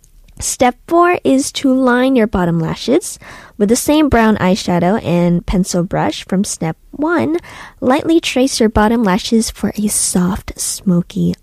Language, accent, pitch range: Korean, American, 185-240 Hz